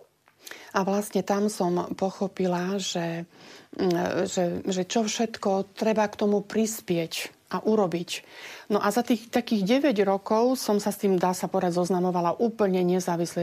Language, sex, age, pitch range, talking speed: Slovak, female, 40-59, 175-205 Hz, 145 wpm